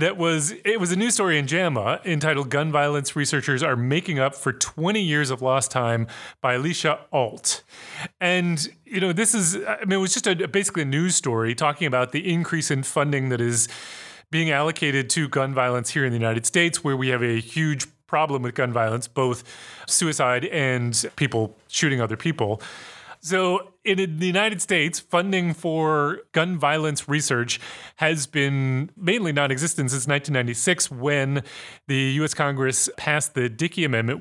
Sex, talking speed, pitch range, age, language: male, 170 wpm, 130-170 Hz, 30-49, English